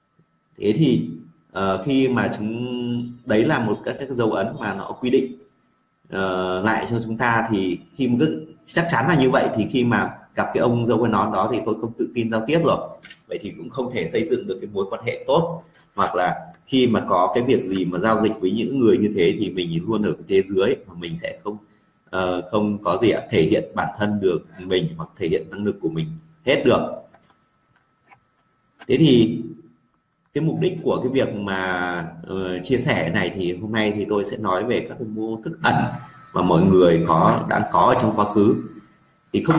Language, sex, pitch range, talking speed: Vietnamese, male, 90-120 Hz, 220 wpm